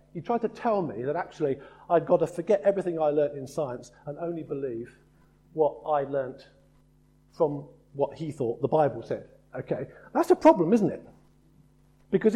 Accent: British